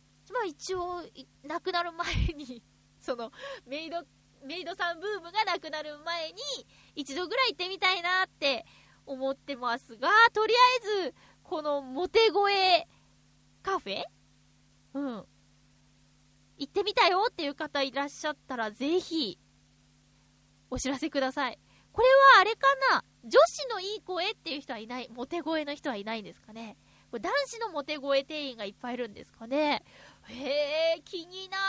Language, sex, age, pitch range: Japanese, female, 20-39, 255-370 Hz